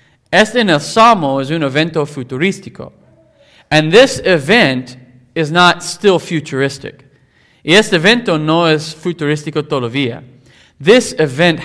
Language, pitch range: English, 130-180 Hz